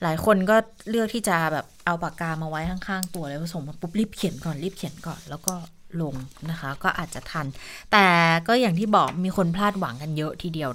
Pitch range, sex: 170-220 Hz, female